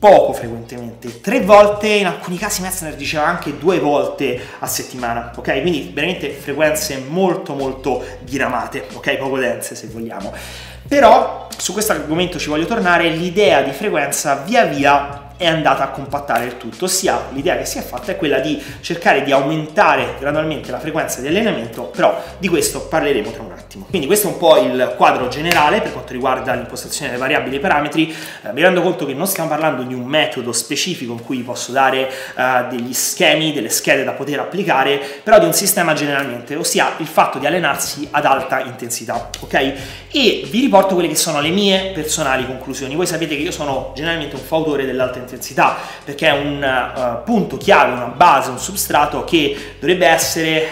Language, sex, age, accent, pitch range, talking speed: Italian, male, 30-49, native, 130-170 Hz, 180 wpm